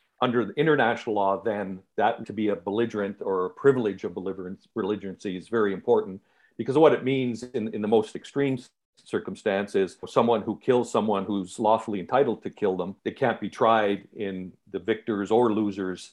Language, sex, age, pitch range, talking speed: English, male, 50-69, 100-120 Hz, 170 wpm